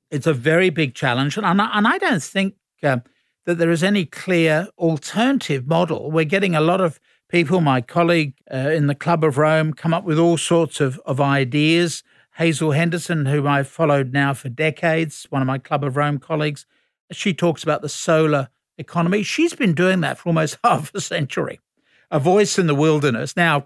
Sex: male